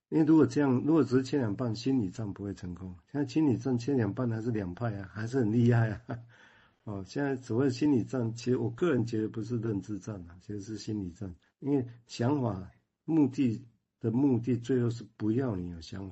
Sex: male